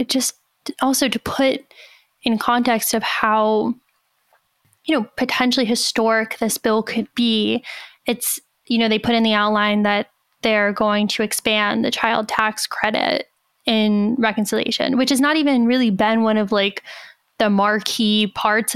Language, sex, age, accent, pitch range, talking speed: English, female, 10-29, American, 215-260 Hz, 150 wpm